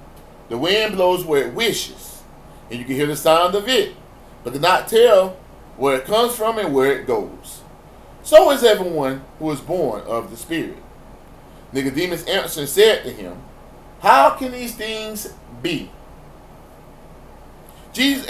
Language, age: English, 30-49